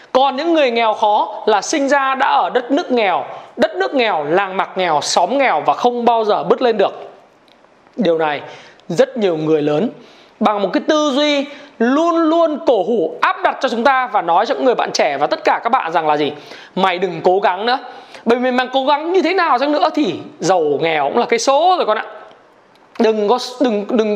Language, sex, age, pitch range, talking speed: Vietnamese, male, 20-39, 210-275 Hz, 230 wpm